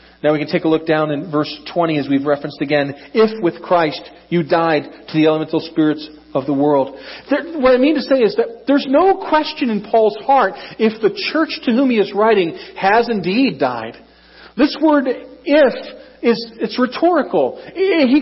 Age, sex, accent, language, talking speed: 40-59, male, American, English, 190 wpm